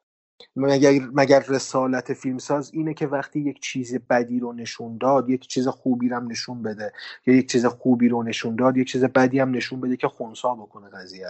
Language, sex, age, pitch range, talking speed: Persian, male, 30-49, 120-150 Hz, 200 wpm